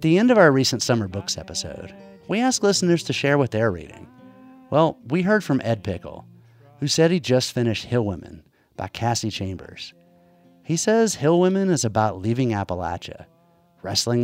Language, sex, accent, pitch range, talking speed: English, male, American, 95-155 Hz, 175 wpm